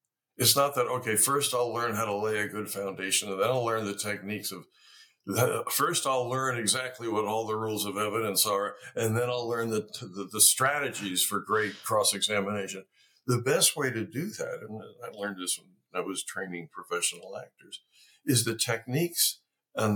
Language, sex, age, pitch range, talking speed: English, male, 60-79, 105-130 Hz, 190 wpm